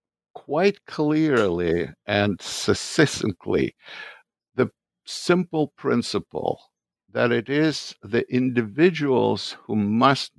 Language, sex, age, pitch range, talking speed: English, male, 60-79, 100-135 Hz, 80 wpm